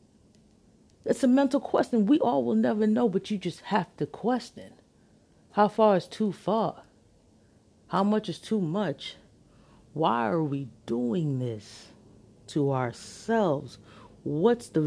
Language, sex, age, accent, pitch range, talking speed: English, female, 40-59, American, 135-190 Hz, 135 wpm